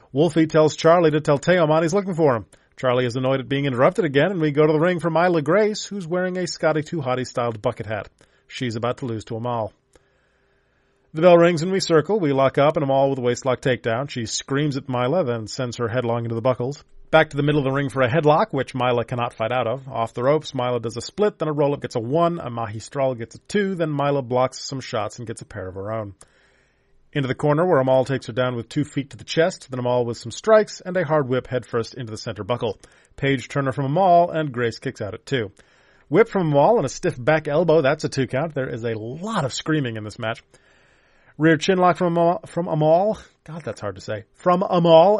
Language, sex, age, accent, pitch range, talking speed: English, male, 30-49, American, 125-160 Hz, 245 wpm